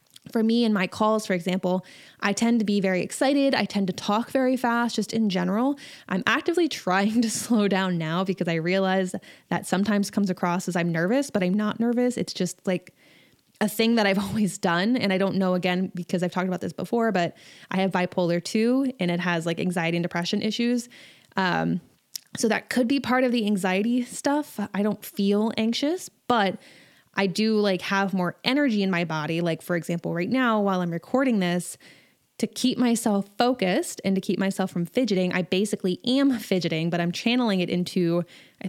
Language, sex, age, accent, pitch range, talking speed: English, female, 20-39, American, 180-235 Hz, 200 wpm